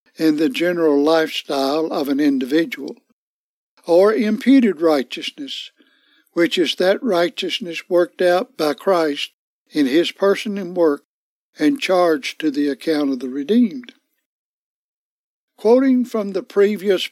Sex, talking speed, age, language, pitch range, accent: male, 125 wpm, 60-79, English, 165-235 Hz, American